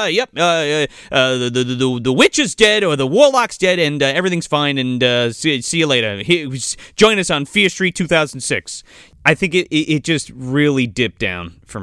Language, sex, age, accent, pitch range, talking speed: English, male, 30-49, American, 115-155 Hz, 215 wpm